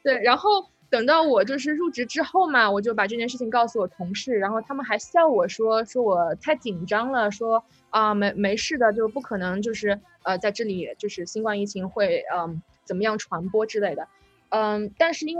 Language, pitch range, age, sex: Chinese, 200-270 Hz, 20-39, female